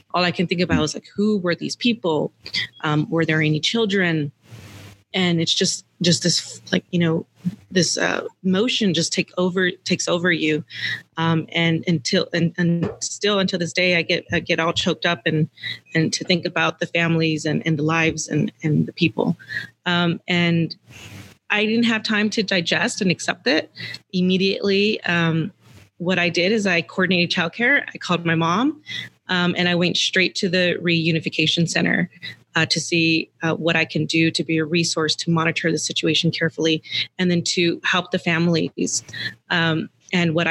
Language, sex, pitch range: English, female, 160-180 Hz